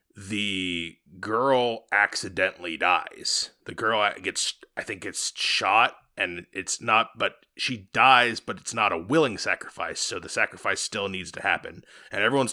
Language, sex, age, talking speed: English, male, 30-49, 155 wpm